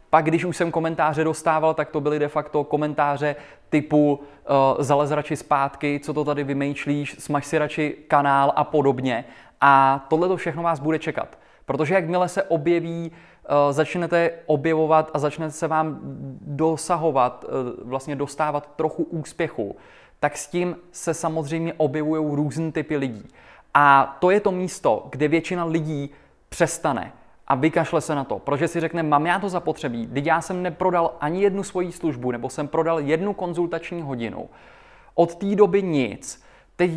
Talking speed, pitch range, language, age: 155 wpm, 145-170 Hz, Czech, 20-39